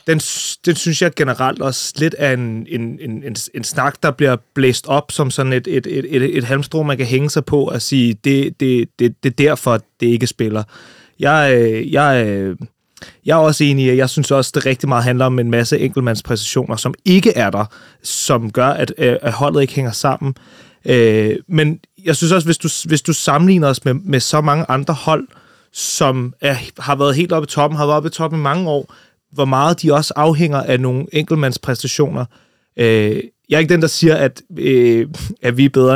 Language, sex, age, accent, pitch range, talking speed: Danish, male, 30-49, native, 125-155 Hz, 210 wpm